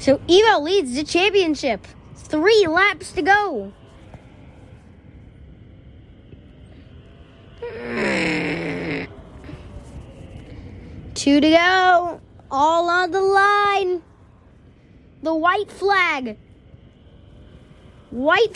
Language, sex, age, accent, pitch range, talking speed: English, female, 20-39, American, 305-410 Hz, 65 wpm